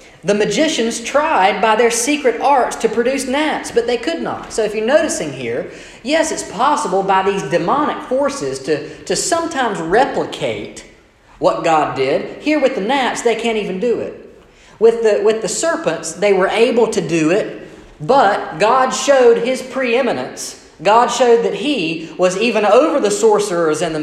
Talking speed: 170 wpm